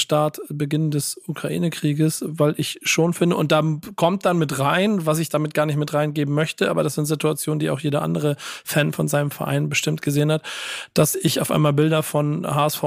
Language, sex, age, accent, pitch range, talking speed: German, male, 40-59, German, 150-170 Hz, 205 wpm